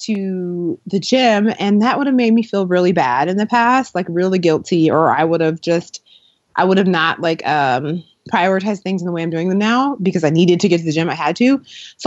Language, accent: English, American